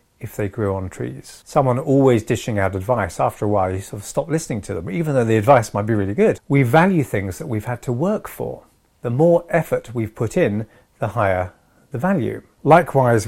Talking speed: 215 wpm